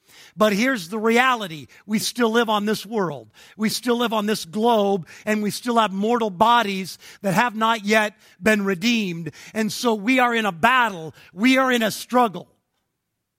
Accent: American